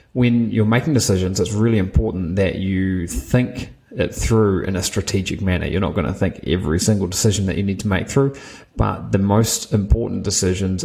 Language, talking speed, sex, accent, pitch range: English, 195 wpm, male, Australian, 95-110 Hz